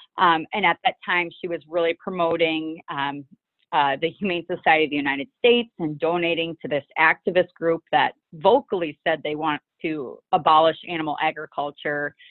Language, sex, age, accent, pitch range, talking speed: English, female, 30-49, American, 160-195 Hz, 160 wpm